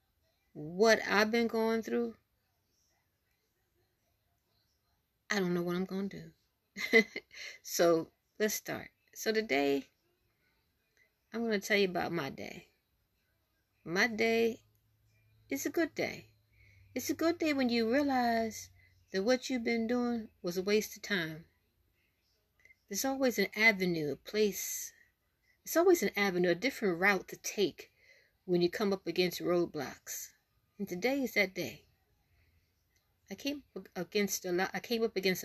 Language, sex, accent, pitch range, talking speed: English, female, American, 140-235 Hz, 145 wpm